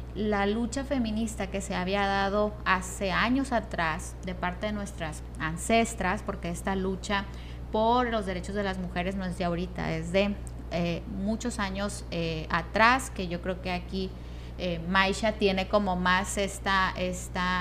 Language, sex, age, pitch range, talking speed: Spanish, female, 30-49, 180-220 Hz, 160 wpm